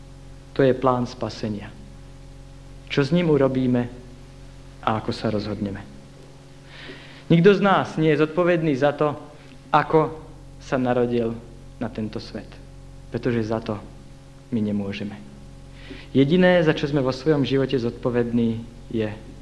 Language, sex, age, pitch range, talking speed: Slovak, male, 50-69, 120-145 Hz, 125 wpm